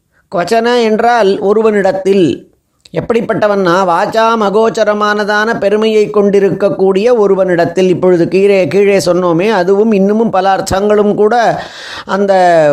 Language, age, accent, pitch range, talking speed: Tamil, 20-39, native, 180-220 Hz, 90 wpm